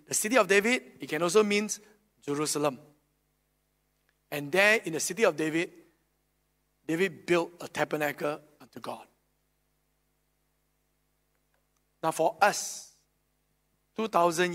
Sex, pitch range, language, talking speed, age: male, 145-190 Hz, English, 105 wpm, 50-69